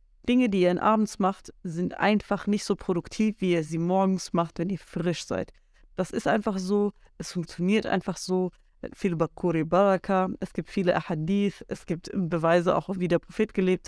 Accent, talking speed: German, 185 wpm